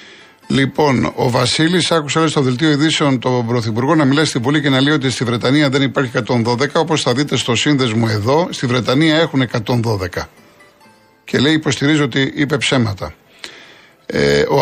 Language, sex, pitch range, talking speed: Greek, male, 120-150 Hz, 165 wpm